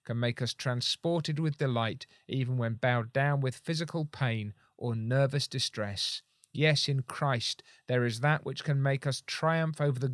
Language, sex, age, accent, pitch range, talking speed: English, male, 40-59, British, 115-140 Hz, 170 wpm